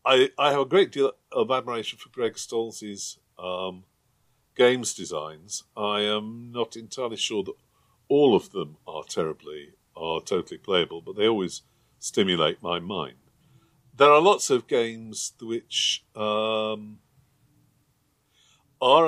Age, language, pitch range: 50-69, English, 95-125 Hz